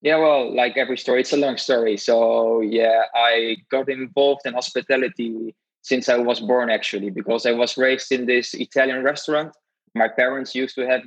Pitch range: 115-135 Hz